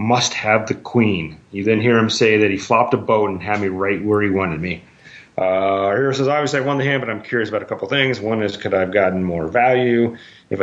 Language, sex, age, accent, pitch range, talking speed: English, male, 40-59, American, 100-125 Hz, 260 wpm